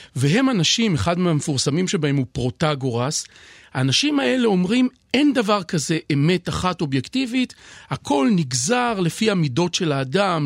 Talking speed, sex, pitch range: 125 wpm, male, 150-205 Hz